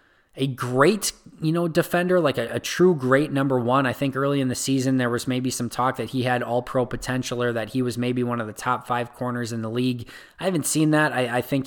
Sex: male